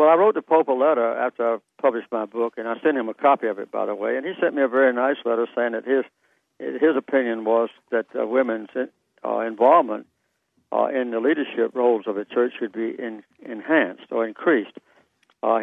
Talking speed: 220 wpm